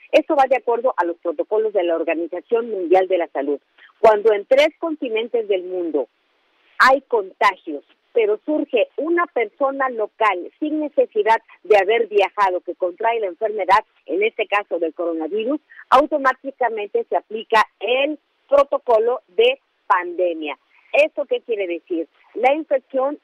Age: 40-59